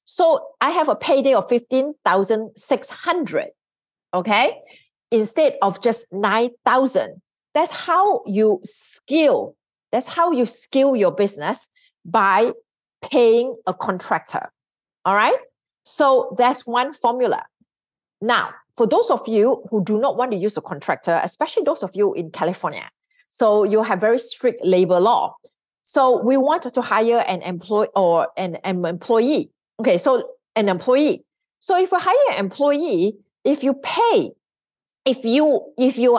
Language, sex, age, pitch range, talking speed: English, female, 40-59, 205-300 Hz, 150 wpm